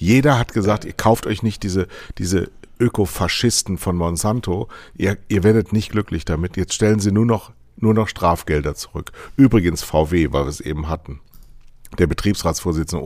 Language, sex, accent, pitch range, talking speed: German, male, German, 80-100 Hz, 160 wpm